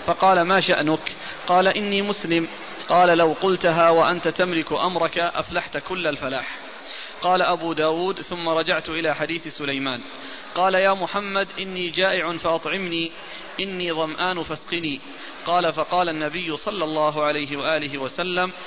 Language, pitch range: Arabic, 160-180 Hz